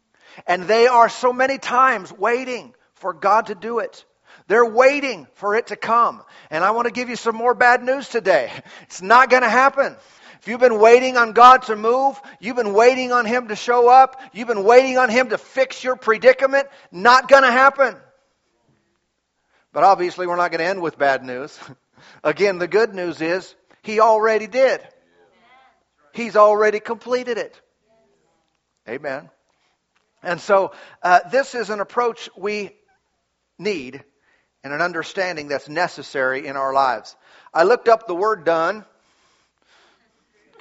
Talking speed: 165 wpm